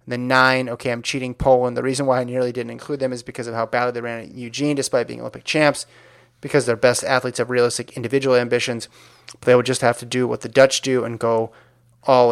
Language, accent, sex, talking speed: English, American, male, 235 wpm